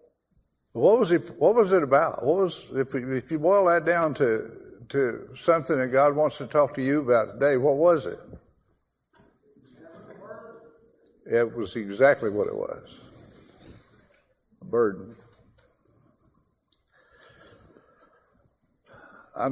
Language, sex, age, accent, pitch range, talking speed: English, male, 60-79, American, 115-170 Hz, 110 wpm